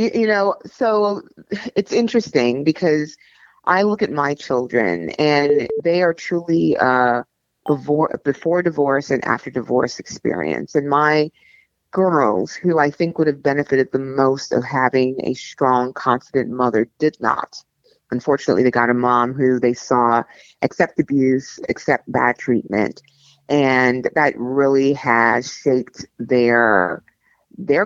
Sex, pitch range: female, 125-150 Hz